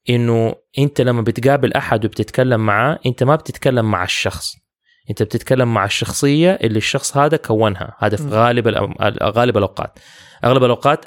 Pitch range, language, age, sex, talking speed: 110-140 Hz, English, 20-39, male, 140 wpm